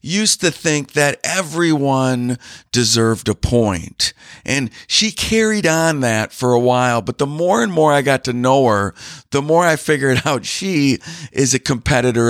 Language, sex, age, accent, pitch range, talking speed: English, male, 50-69, American, 125-165 Hz, 170 wpm